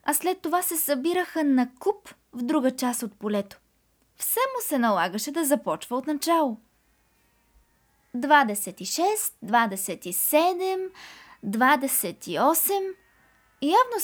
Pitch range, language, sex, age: 210-305 Hz, Bulgarian, female, 20-39